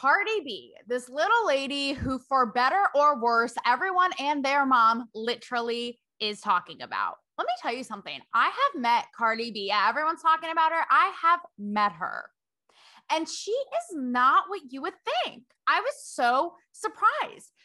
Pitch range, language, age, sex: 245-345 Hz, English, 20-39, female